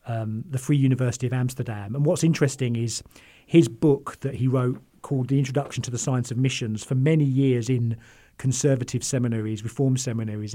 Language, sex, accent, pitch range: English, male, British, 115-135 Hz